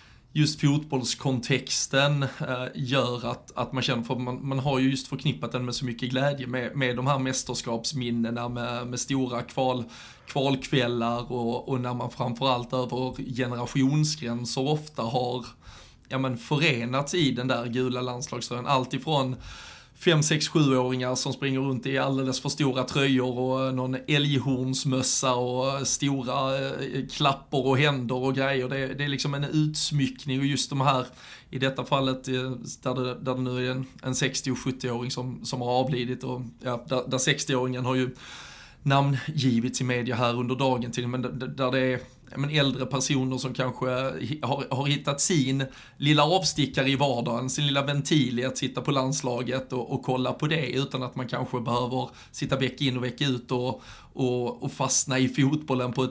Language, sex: Swedish, male